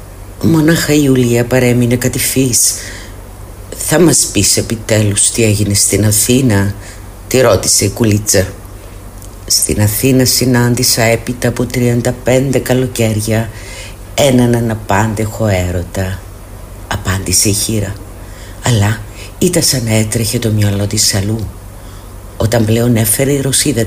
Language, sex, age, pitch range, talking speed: Greek, female, 50-69, 95-115 Hz, 110 wpm